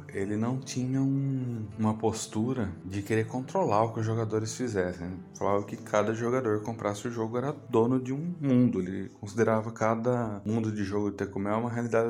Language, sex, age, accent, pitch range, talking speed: Portuguese, male, 20-39, Brazilian, 100-125 Hz, 180 wpm